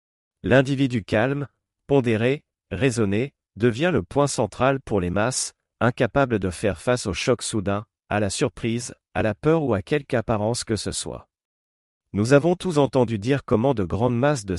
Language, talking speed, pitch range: French, 170 wpm, 100-135 Hz